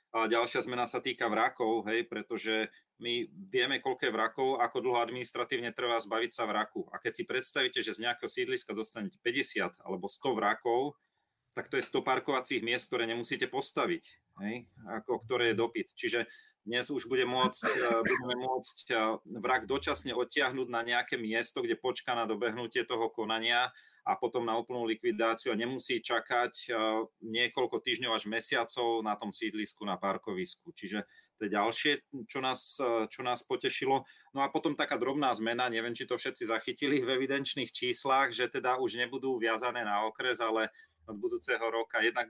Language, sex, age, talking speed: Slovak, male, 30-49, 165 wpm